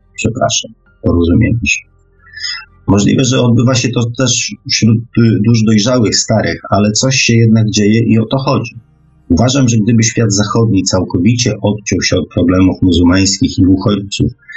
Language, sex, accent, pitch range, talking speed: Polish, male, native, 95-115 Hz, 145 wpm